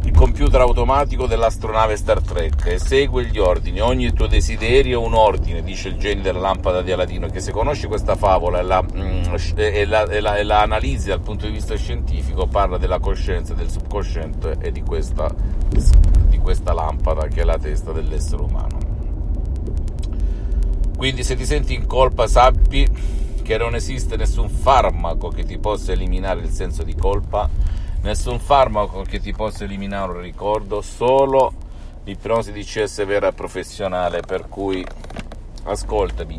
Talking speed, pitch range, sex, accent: 150 wpm, 80-100 Hz, male, native